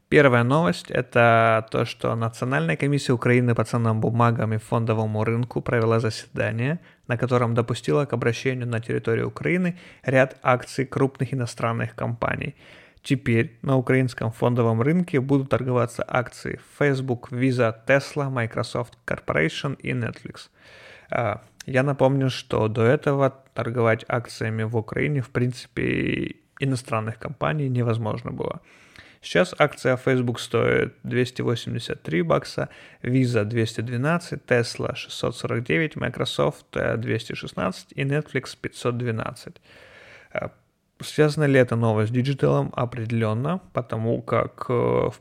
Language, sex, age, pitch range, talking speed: Ukrainian, male, 30-49, 115-135 Hz, 115 wpm